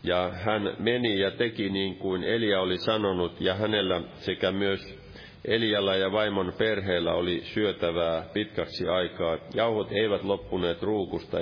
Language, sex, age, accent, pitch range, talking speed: Finnish, male, 40-59, native, 85-100 Hz, 135 wpm